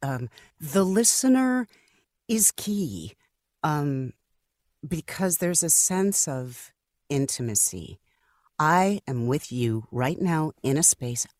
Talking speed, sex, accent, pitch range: 110 wpm, female, American, 120-170 Hz